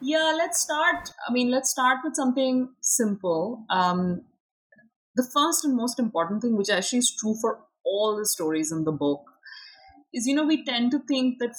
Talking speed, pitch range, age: 185 wpm, 180-255 Hz, 30-49